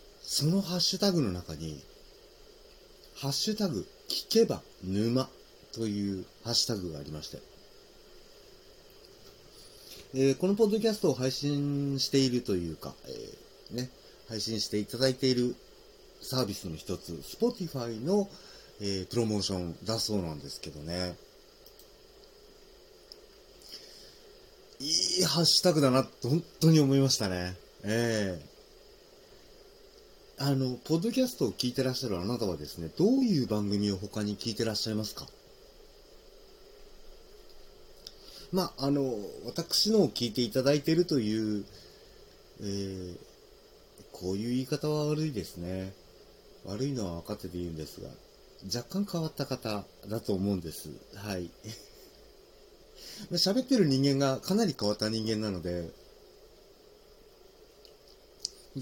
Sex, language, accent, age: male, Japanese, native, 40-59